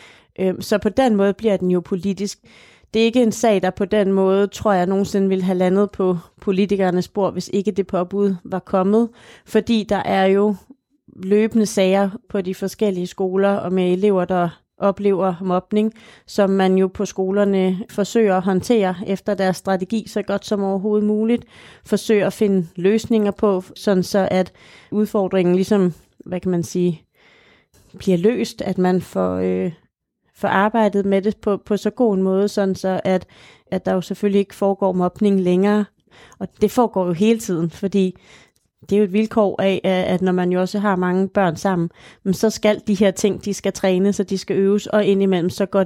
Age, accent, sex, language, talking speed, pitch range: 30-49, native, female, Danish, 190 wpm, 185-205 Hz